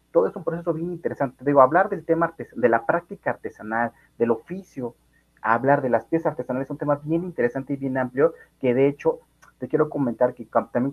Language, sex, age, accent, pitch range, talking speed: Spanish, male, 30-49, Mexican, 115-145 Hz, 215 wpm